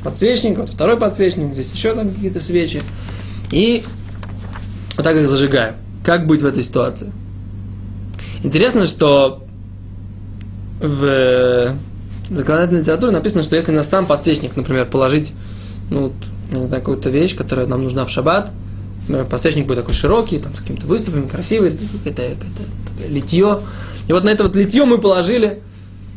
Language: Russian